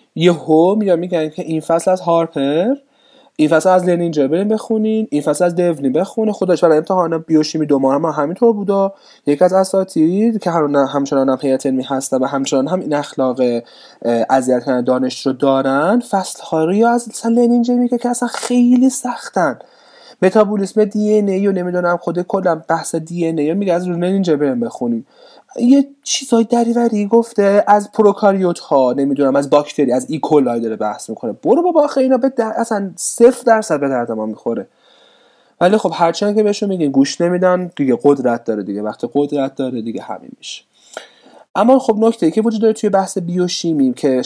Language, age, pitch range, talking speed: Persian, 30-49, 145-220 Hz, 170 wpm